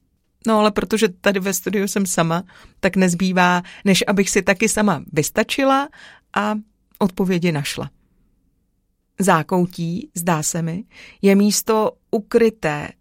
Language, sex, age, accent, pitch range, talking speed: Czech, female, 40-59, native, 175-210 Hz, 120 wpm